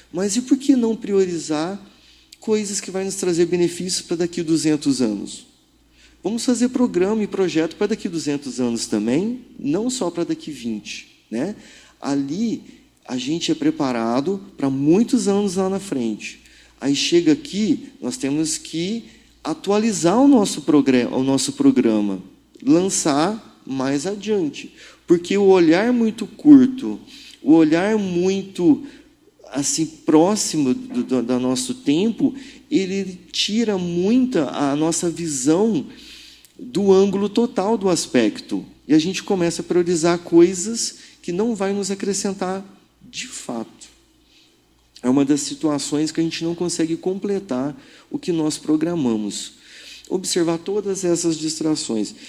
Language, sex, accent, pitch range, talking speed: Portuguese, male, Brazilian, 155-235 Hz, 135 wpm